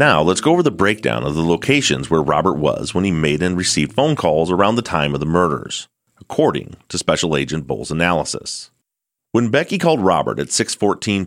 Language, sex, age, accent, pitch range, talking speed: English, male, 30-49, American, 80-110 Hz, 195 wpm